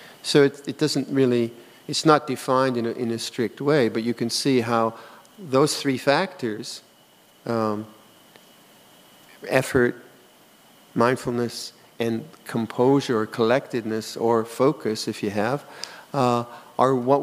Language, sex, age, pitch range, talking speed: English, male, 50-69, 110-135 Hz, 125 wpm